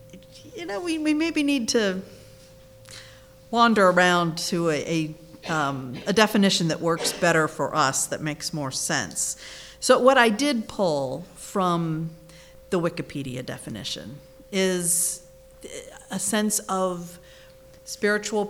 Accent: American